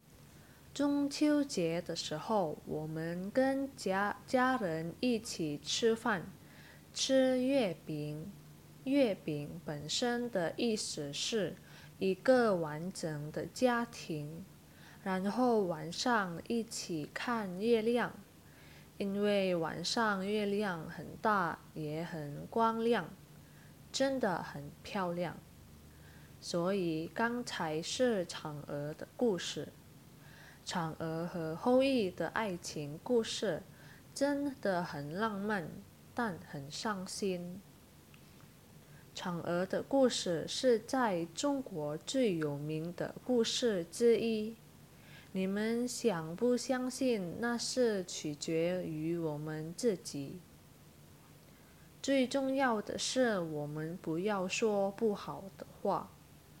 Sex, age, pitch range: female, 10-29, 160-235 Hz